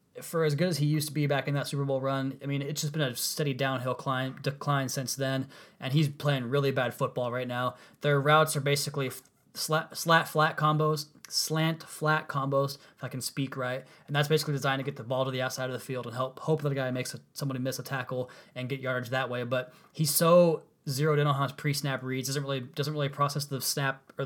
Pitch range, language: 130-145 Hz, English